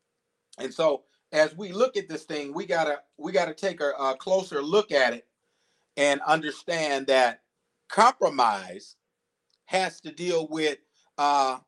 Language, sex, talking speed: English, male, 155 wpm